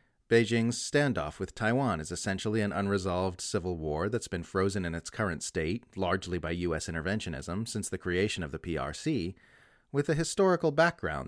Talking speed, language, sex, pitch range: 165 wpm, English, male, 95-125 Hz